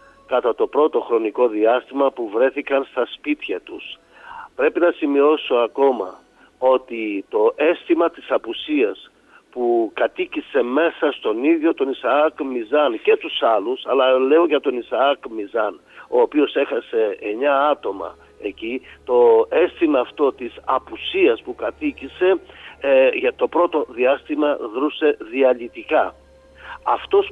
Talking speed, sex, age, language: 125 wpm, male, 50-69, Greek